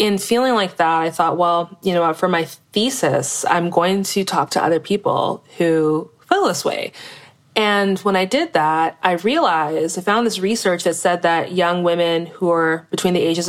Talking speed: 195 wpm